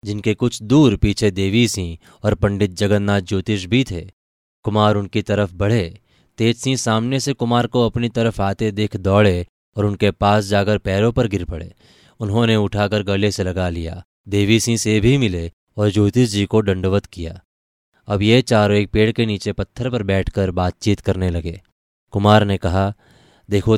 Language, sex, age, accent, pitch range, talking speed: Hindi, male, 20-39, native, 95-110 Hz, 170 wpm